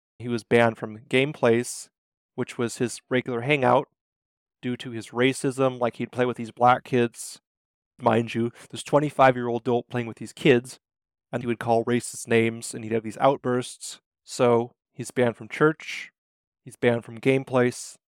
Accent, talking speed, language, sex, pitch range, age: American, 170 wpm, English, male, 115-130 Hz, 30-49